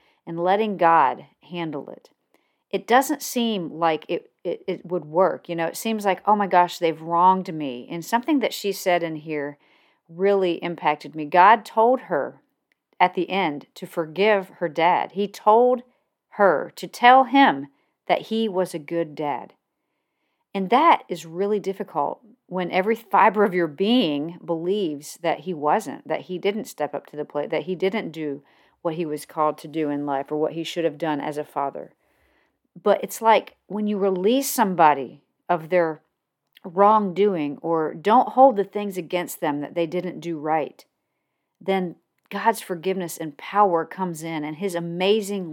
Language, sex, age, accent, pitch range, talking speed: English, female, 40-59, American, 165-205 Hz, 175 wpm